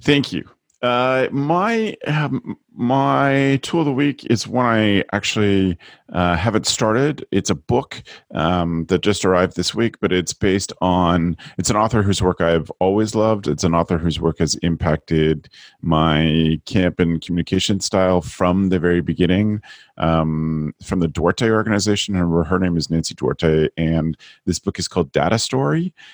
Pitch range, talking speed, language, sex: 85-110 Hz, 165 wpm, English, male